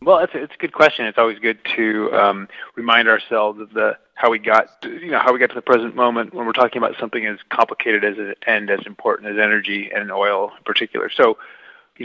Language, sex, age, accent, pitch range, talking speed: English, male, 30-49, American, 105-115 Hz, 240 wpm